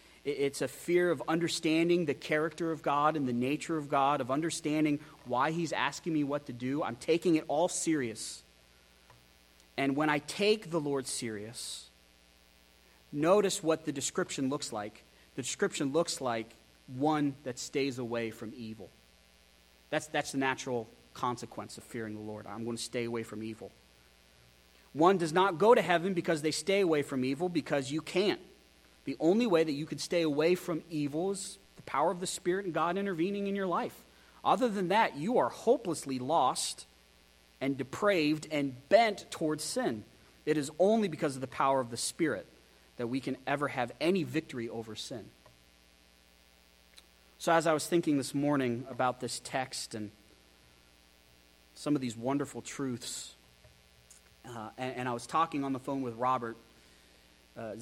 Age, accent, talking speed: 30-49, American, 170 wpm